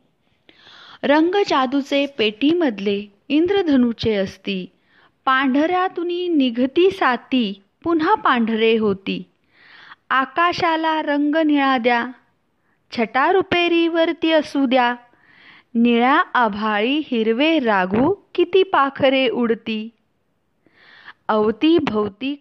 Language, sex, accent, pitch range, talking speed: Marathi, female, native, 225-320 Hz, 80 wpm